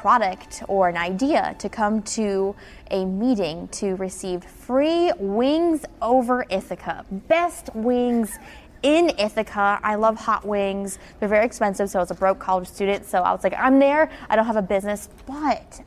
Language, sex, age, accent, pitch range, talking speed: English, female, 10-29, American, 205-280 Hz, 170 wpm